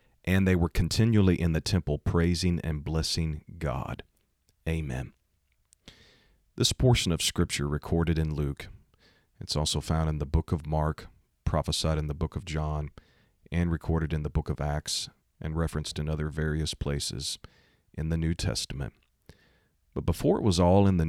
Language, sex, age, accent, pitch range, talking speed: English, male, 40-59, American, 80-95 Hz, 160 wpm